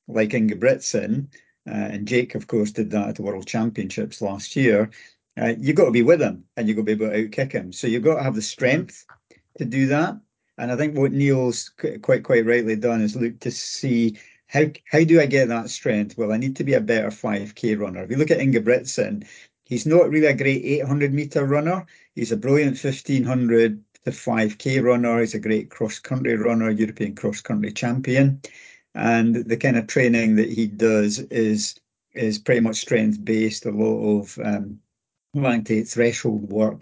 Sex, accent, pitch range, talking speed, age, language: male, British, 110-135 Hz, 190 wpm, 50-69, English